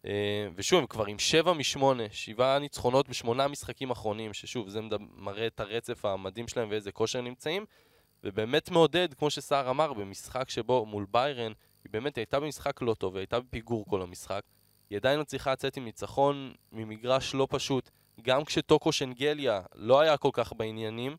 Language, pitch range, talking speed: Hebrew, 110-140 Hz, 165 wpm